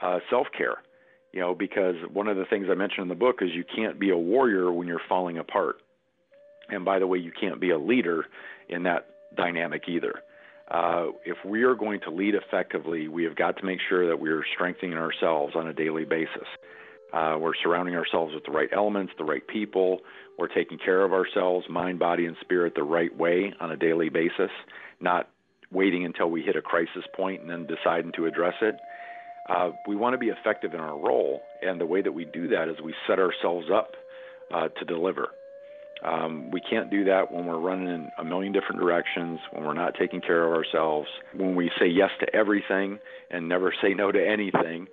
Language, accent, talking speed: English, American, 210 wpm